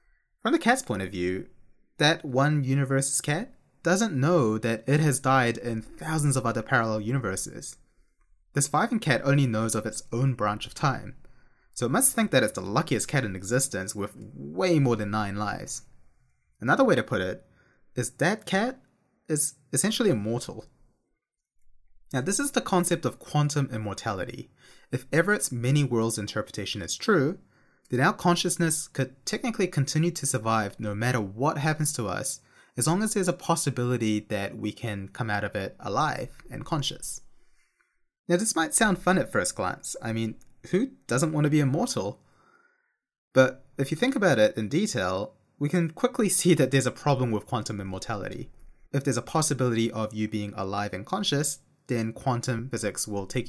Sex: male